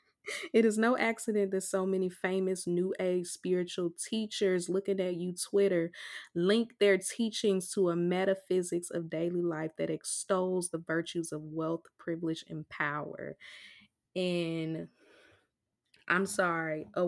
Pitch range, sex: 170-220 Hz, female